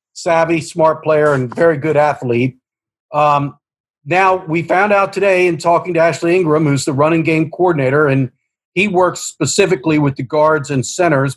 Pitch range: 140-170 Hz